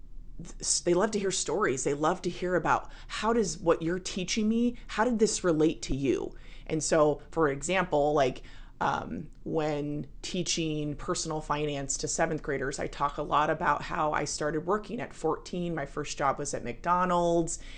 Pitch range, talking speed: 150-205 Hz, 175 wpm